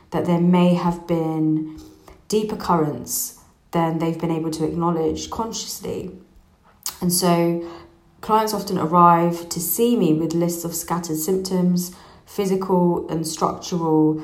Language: English